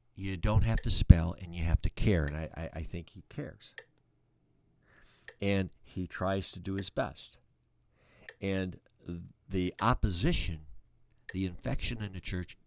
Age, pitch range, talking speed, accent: 50-69, 90-115 Hz, 150 wpm, American